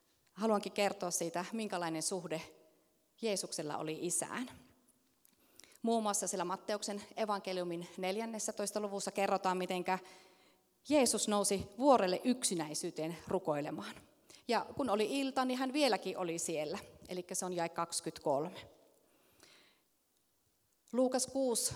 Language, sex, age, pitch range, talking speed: Finnish, female, 30-49, 175-225 Hz, 100 wpm